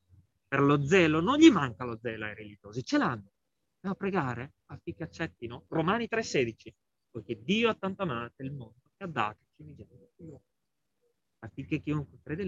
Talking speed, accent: 165 wpm, native